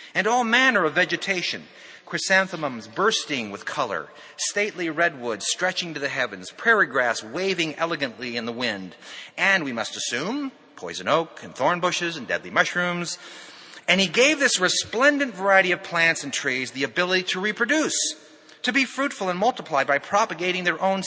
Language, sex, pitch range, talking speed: English, male, 155-200 Hz, 160 wpm